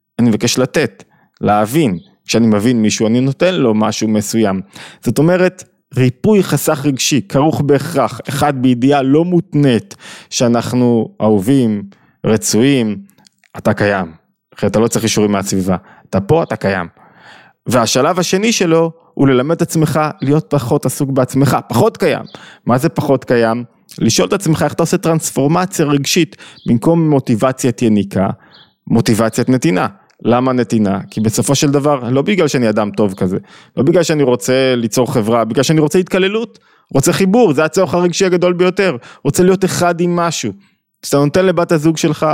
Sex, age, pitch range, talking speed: male, 20-39, 120-165 Hz, 150 wpm